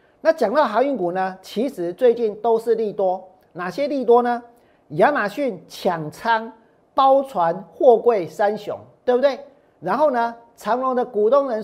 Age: 50-69